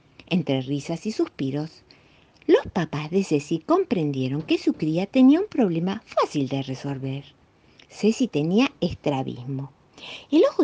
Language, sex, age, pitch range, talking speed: Spanish, female, 50-69, 140-215 Hz, 130 wpm